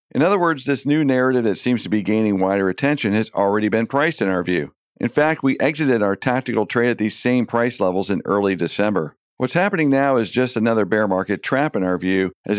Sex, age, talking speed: male, 50-69, 230 wpm